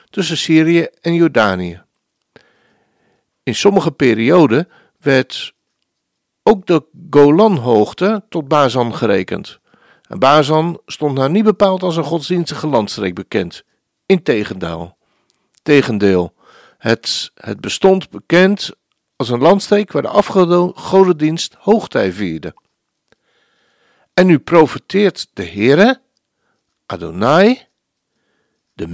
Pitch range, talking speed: 150-205 Hz, 95 wpm